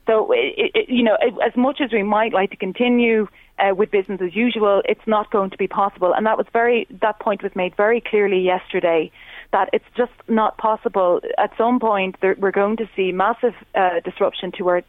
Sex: female